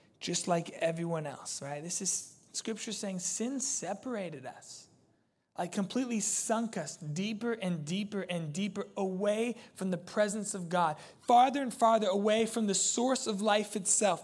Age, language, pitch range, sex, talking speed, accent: 20-39, English, 175-230 Hz, male, 155 wpm, American